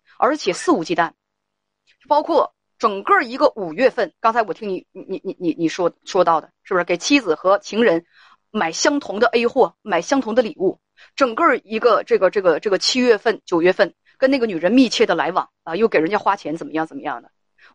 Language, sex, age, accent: Chinese, female, 30-49, native